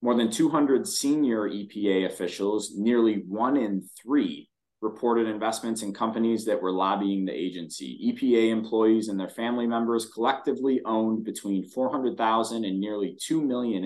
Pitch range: 100-120 Hz